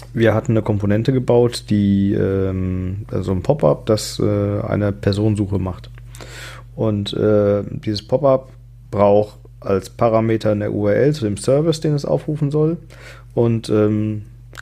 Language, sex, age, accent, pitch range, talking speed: German, male, 40-59, German, 105-125 Hz, 140 wpm